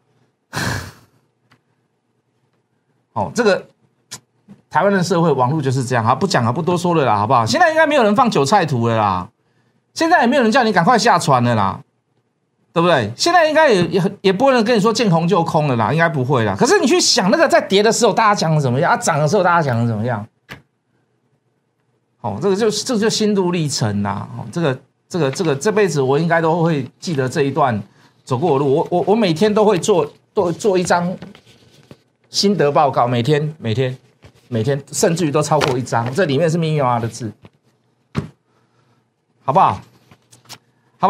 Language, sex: Chinese, male